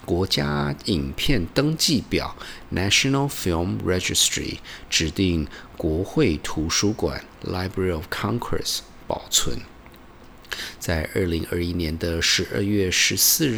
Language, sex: Chinese, male